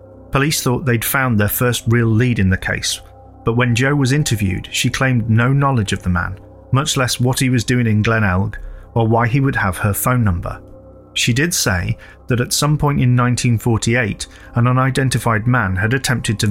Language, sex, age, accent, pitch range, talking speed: English, male, 30-49, British, 105-130 Hz, 195 wpm